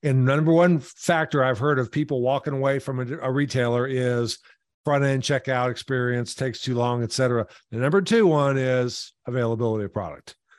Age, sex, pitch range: 50-69, male, 125-150 Hz